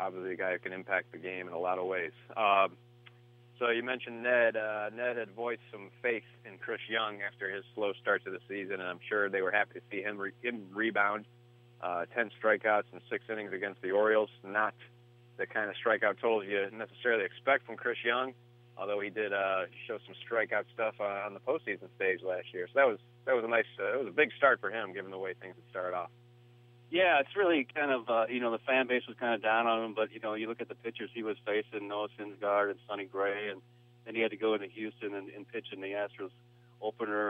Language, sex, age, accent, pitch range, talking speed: English, male, 30-49, American, 100-120 Hz, 245 wpm